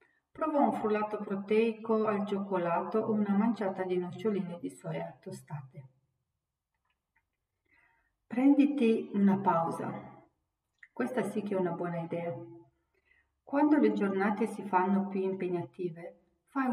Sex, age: female, 40-59